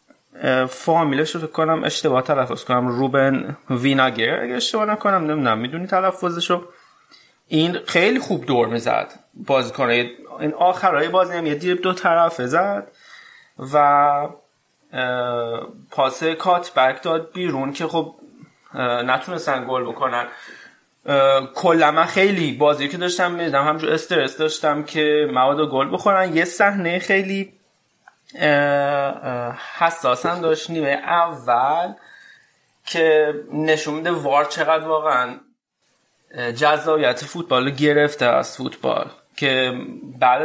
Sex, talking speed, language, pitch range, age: male, 115 wpm, Persian, 135-170 Hz, 30-49